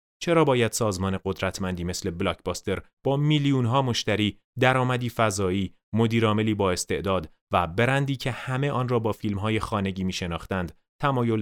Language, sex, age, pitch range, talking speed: Persian, male, 30-49, 85-115 Hz, 140 wpm